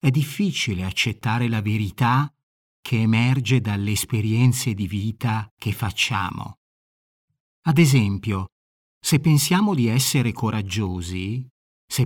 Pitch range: 100-140 Hz